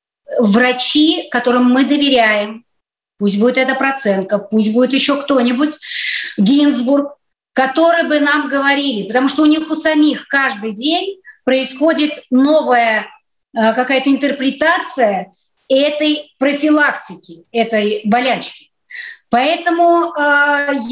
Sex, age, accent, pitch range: female, 30-49, native, 225-295 Hz